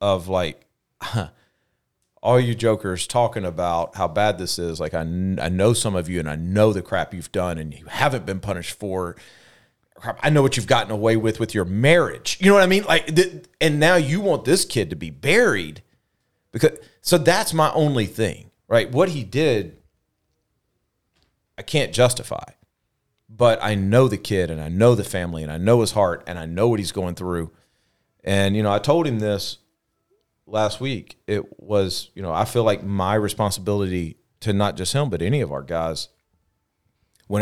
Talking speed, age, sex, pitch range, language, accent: 190 wpm, 40-59, male, 90-115 Hz, English, American